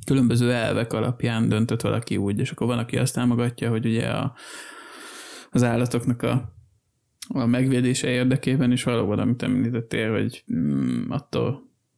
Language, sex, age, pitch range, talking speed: Hungarian, male, 20-39, 115-130 Hz, 140 wpm